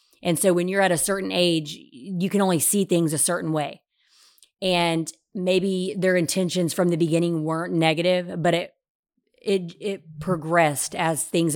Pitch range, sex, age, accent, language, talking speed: 160-195 Hz, female, 30-49, American, English, 165 wpm